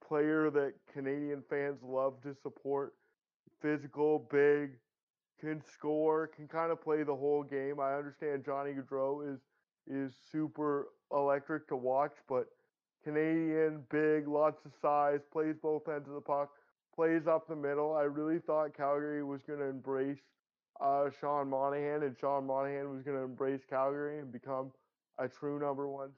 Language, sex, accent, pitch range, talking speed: English, male, American, 140-155 Hz, 160 wpm